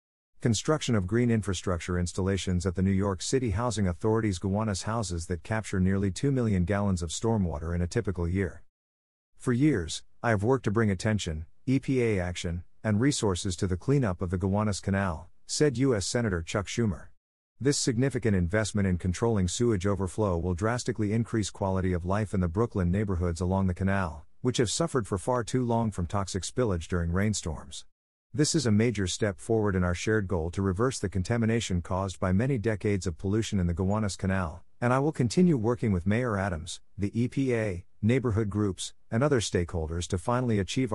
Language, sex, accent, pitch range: English, male, American, 90-115 Hz